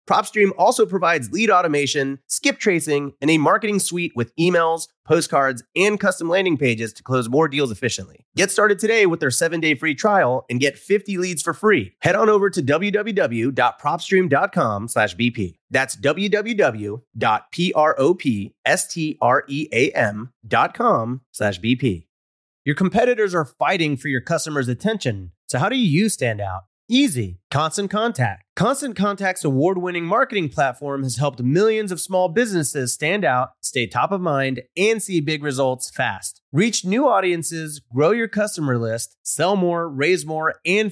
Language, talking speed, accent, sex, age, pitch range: English, 140 wpm, American, male, 30-49, 135-190 Hz